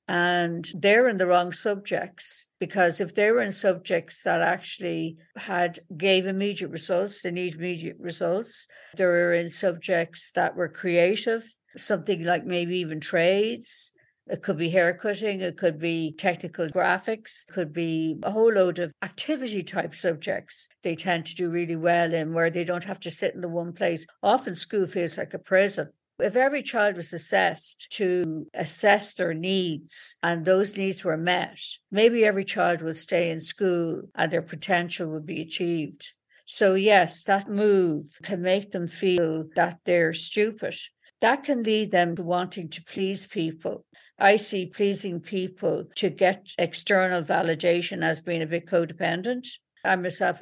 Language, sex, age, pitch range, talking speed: English, female, 60-79, 170-195 Hz, 160 wpm